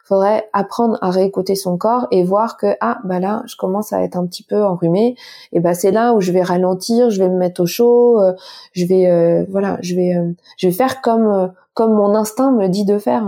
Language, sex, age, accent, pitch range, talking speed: French, female, 20-39, French, 185-225 Hz, 235 wpm